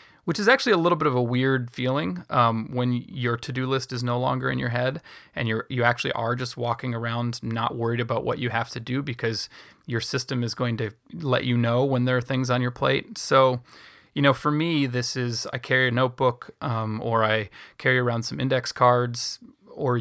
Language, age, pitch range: English, 30-49, 115-135 Hz